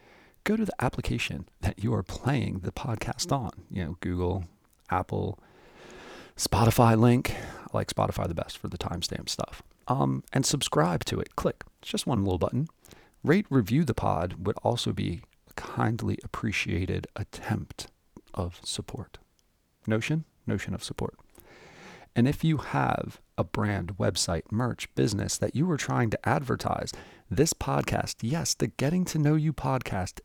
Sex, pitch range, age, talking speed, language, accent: male, 95-135 Hz, 30-49, 155 wpm, English, American